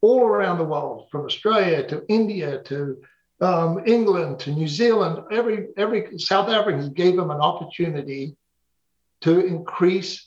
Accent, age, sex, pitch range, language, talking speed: American, 60-79, male, 150-185 Hz, English, 140 wpm